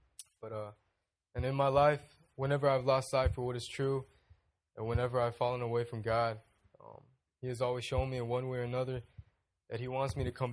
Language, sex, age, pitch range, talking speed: English, male, 20-39, 105-125 Hz, 210 wpm